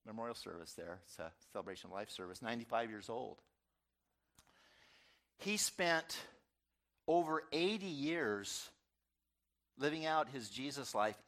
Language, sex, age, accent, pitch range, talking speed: English, male, 50-69, American, 105-140 Hz, 115 wpm